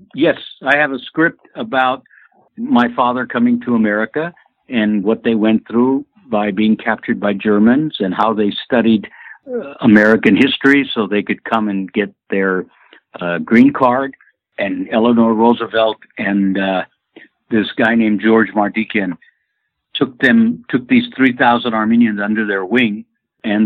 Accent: American